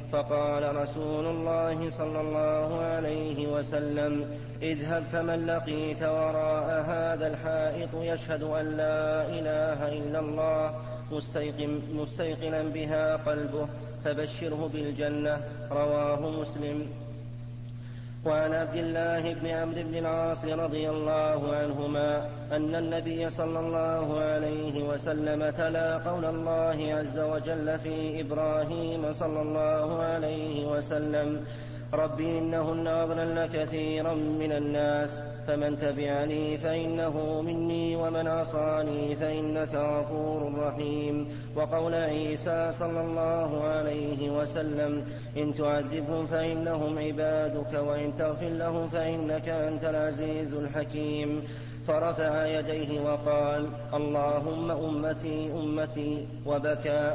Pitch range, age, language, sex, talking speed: 145-160 Hz, 30-49, Arabic, male, 95 wpm